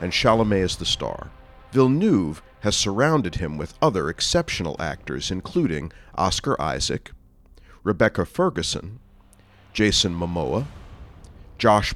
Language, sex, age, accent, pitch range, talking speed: English, male, 40-59, American, 85-115 Hz, 105 wpm